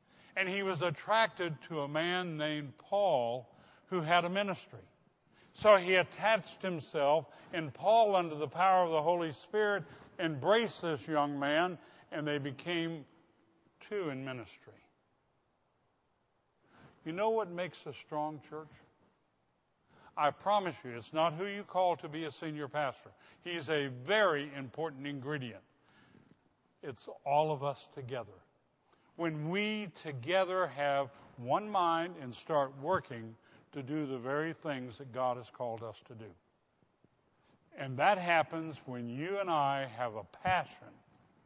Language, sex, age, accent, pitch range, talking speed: English, male, 60-79, American, 130-175 Hz, 140 wpm